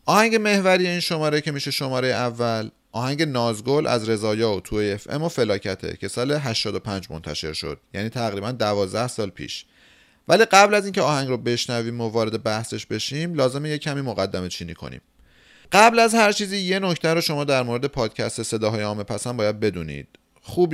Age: 30-49